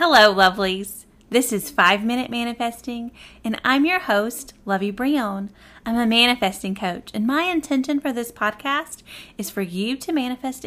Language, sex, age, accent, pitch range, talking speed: English, female, 30-49, American, 200-275 Hz, 150 wpm